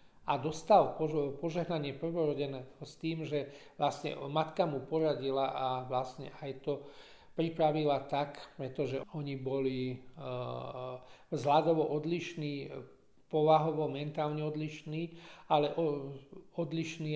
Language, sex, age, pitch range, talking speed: Slovak, male, 40-59, 135-155 Hz, 100 wpm